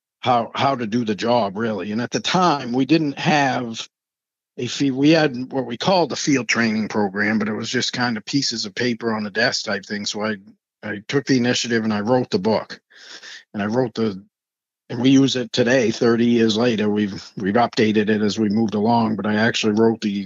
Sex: male